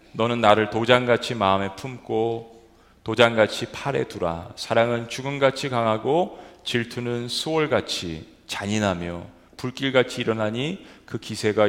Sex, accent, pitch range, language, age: male, native, 100-135 Hz, Korean, 40-59